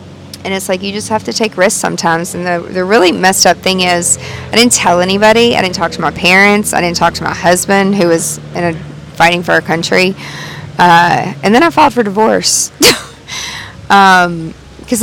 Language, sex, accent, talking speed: English, female, American, 200 wpm